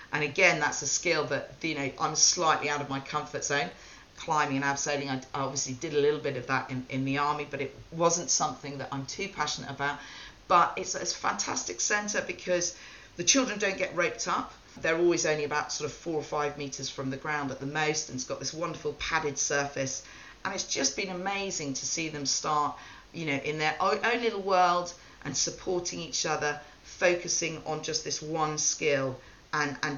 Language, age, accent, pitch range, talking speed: English, 40-59, British, 140-170 Hz, 210 wpm